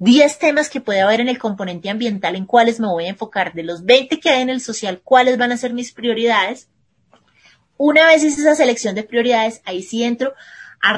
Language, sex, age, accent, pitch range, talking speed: Spanish, female, 30-49, Colombian, 195-245 Hz, 220 wpm